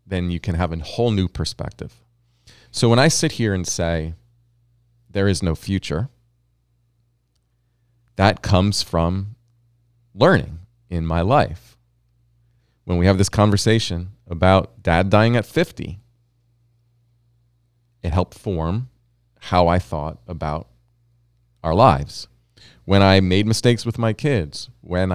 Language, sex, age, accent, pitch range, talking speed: English, male, 40-59, American, 95-120 Hz, 125 wpm